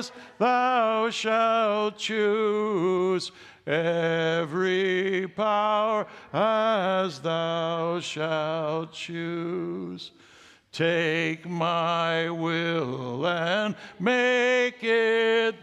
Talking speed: 60 wpm